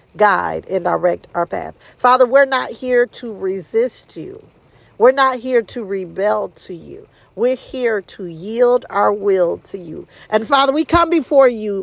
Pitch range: 175-245 Hz